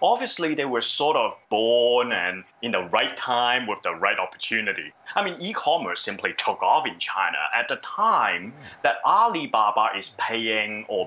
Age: 30-49